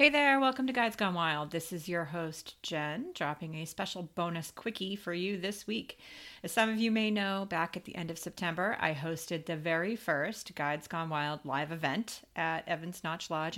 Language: English